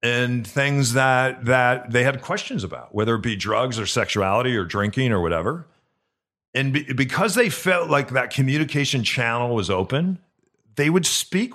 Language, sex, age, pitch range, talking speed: English, male, 40-59, 110-155 Hz, 165 wpm